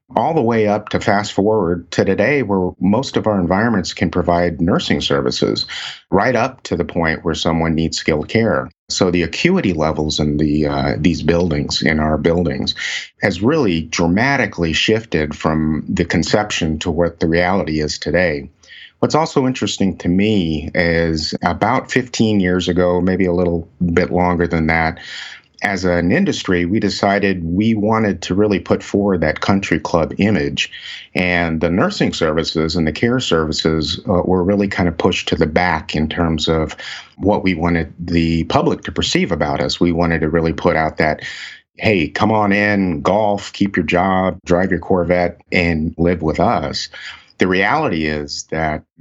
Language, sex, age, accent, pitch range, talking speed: English, male, 50-69, American, 80-95 Hz, 170 wpm